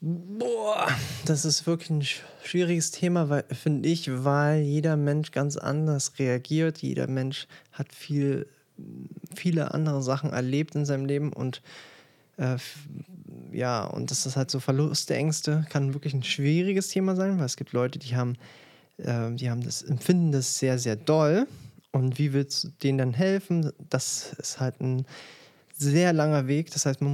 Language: German